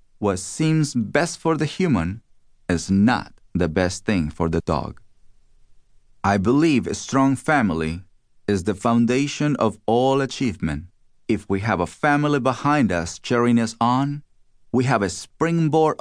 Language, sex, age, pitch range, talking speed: English, male, 40-59, 95-140 Hz, 145 wpm